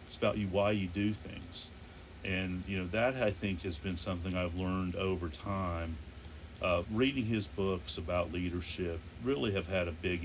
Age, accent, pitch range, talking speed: 40-59, American, 85-100 Hz, 180 wpm